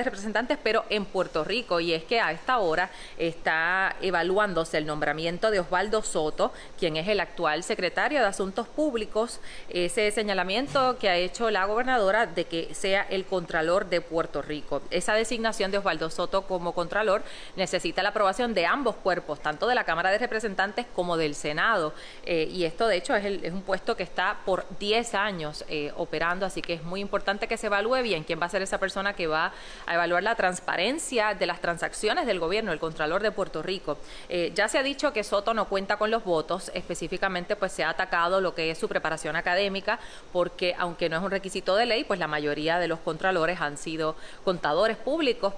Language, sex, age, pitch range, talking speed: Spanish, female, 30-49, 165-200 Hz, 200 wpm